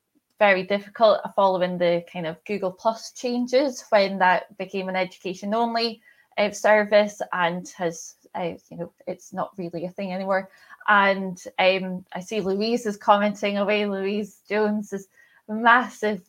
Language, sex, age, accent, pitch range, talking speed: English, female, 20-39, British, 185-220 Hz, 145 wpm